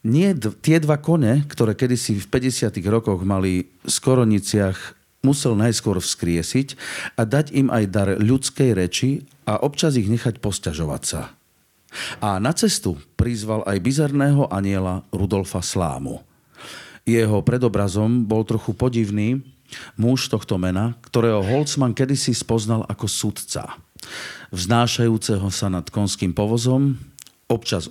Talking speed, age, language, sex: 125 wpm, 40-59, Slovak, male